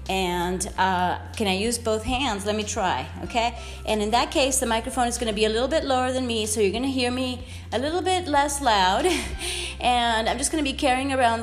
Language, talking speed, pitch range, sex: English, 240 wpm, 200-275 Hz, female